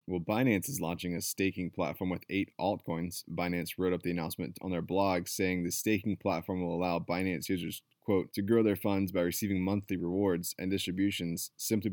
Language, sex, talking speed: English, male, 190 wpm